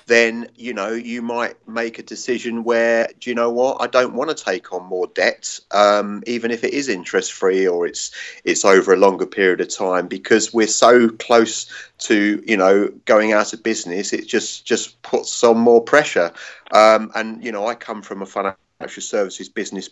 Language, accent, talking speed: English, British, 200 wpm